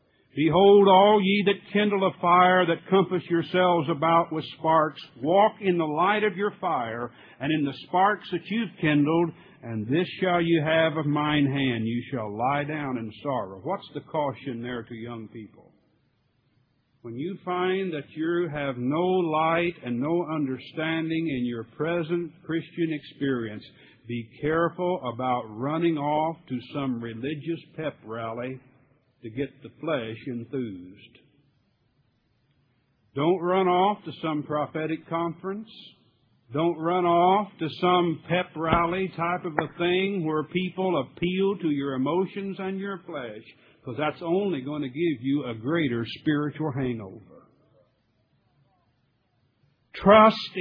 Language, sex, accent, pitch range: English, male, American, 130-175 Hz